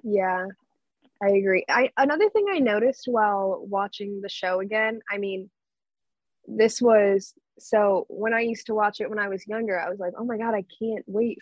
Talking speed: 195 wpm